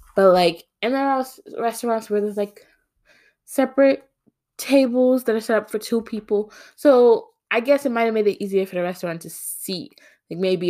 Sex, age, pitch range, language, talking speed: female, 20-39, 170-265 Hz, English, 195 wpm